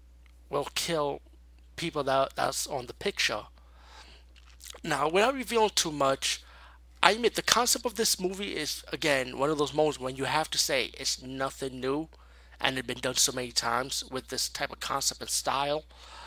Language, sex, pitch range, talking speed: English, male, 100-155 Hz, 175 wpm